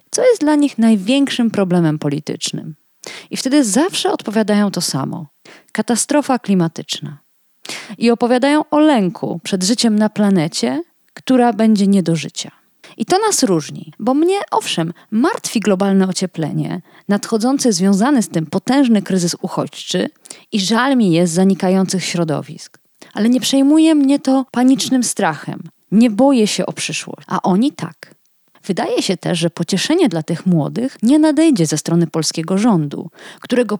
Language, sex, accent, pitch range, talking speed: Polish, female, native, 160-245 Hz, 145 wpm